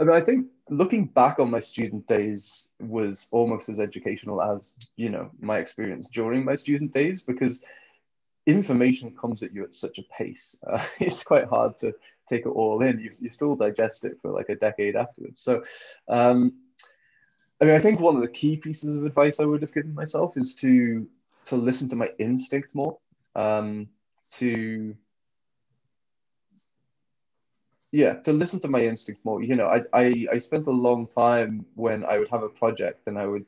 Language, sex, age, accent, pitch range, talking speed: English, male, 20-39, British, 105-140 Hz, 185 wpm